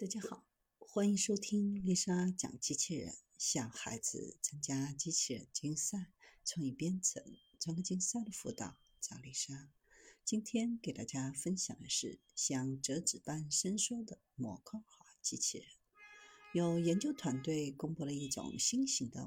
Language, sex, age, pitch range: Chinese, female, 50-69, 140-230 Hz